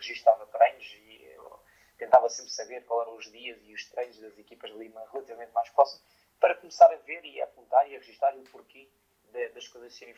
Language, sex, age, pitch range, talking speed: Portuguese, male, 20-39, 120-170 Hz, 210 wpm